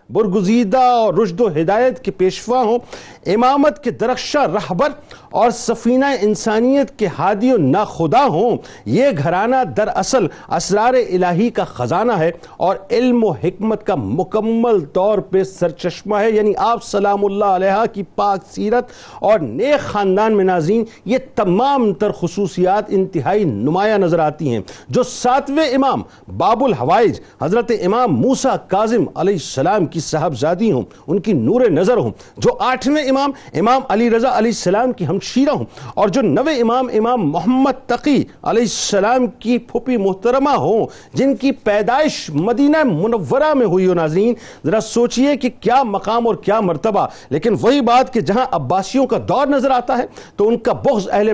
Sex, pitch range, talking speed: male, 190-250 Hz, 160 wpm